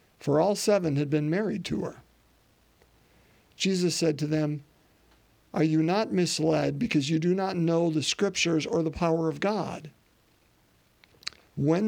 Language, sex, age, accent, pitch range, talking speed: English, male, 50-69, American, 140-175 Hz, 145 wpm